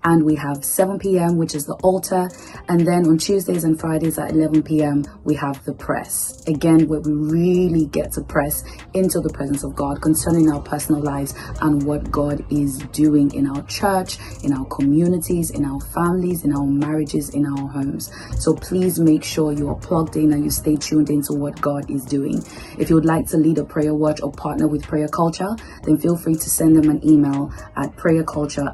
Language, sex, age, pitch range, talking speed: English, female, 20-39, 145-165 Hz, 205 wpm